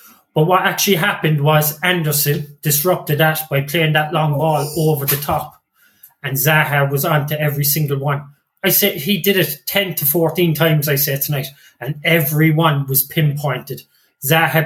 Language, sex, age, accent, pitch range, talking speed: English, male, 30-49, British, 145-175 Hz, 165 wpm